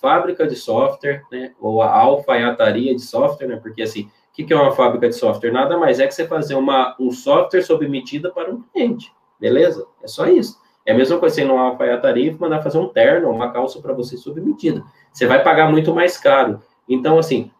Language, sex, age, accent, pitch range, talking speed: Portuguese, male, 20-39, Brazilian, 125-180 Hz, 205 wpm